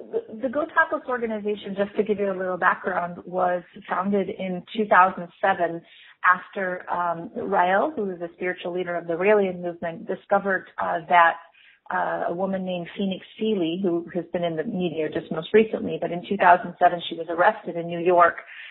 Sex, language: female, English